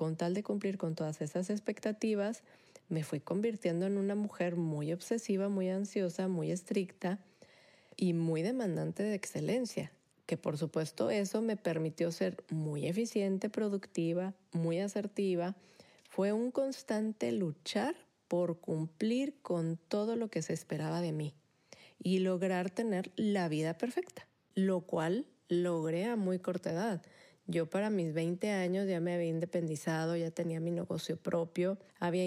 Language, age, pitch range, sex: Spanish, 30-49, 165-195 Hz, female